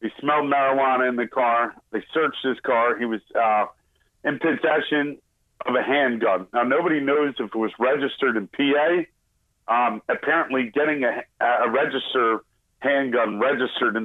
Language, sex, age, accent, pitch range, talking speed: English, male, 40-59, American, 125-155 Hz, 155 wpm